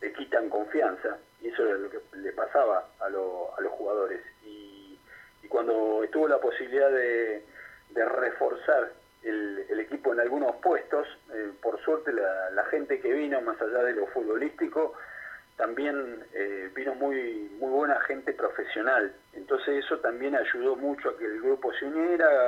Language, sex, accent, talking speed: Spanish, male, Argentinian, 165 wpm